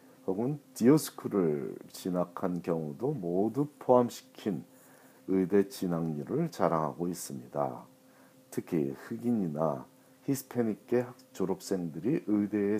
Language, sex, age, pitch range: Korean, male, 40-59, 85-120 Hz